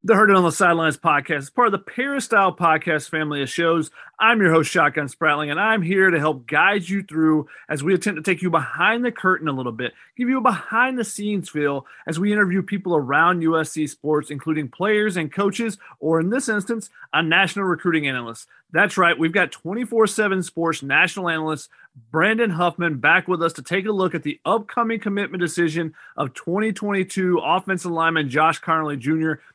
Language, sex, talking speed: English, male, 190 wpm